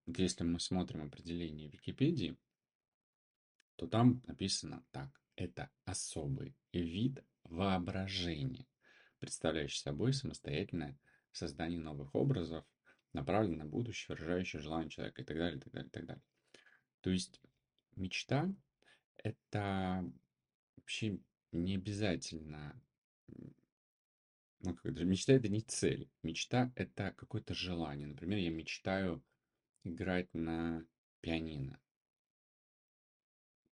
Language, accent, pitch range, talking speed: Russian, native, 75-95 Hz, 100 wpm